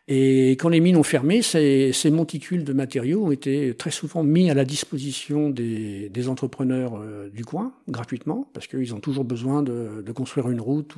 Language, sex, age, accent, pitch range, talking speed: French, male, 50-69, French, 120-150 Hz, 195 wpm